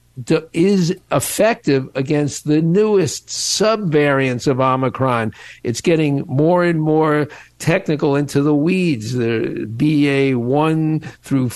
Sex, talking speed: male, 105 wpm